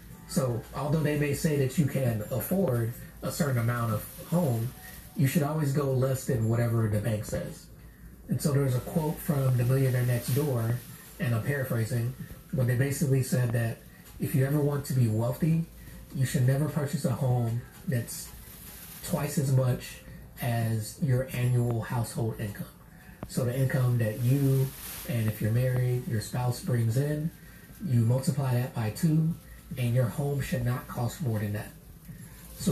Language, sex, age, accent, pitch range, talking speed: English, male, 30-49, American, 115-145 Hz, 170 wpm